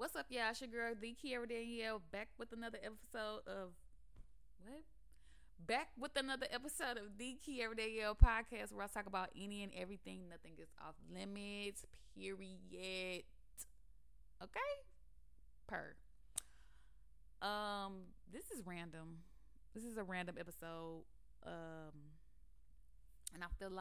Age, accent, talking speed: 20-39, American, 140 wpm